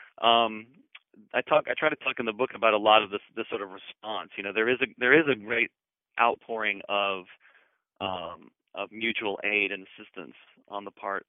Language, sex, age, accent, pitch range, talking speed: English, male, 30-49, American, 100-115 Hz, 205 wpm